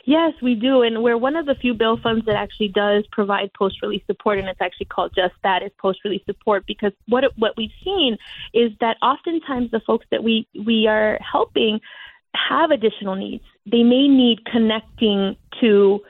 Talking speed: 185 wpm